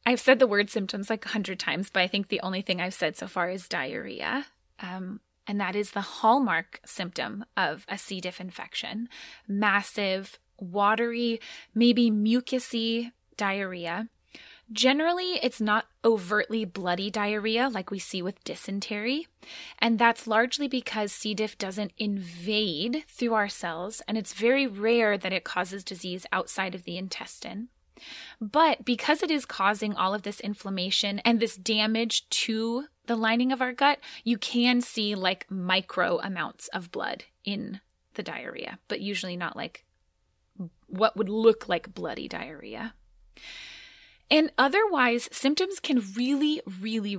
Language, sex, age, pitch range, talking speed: English, female, 20-39, 195-245 Hz, 150 wpm